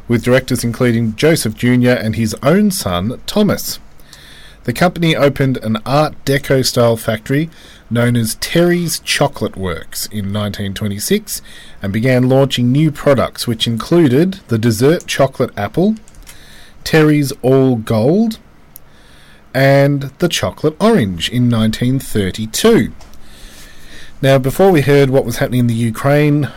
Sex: male